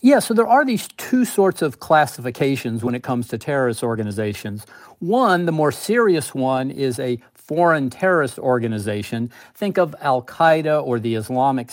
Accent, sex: American, male